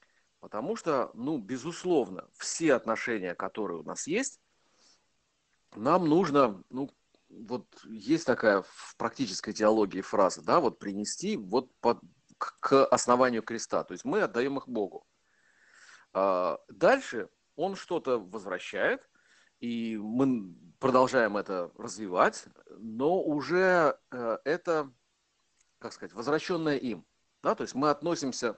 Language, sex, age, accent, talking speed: Ukrainian, male, 40-59, native, 115 wpm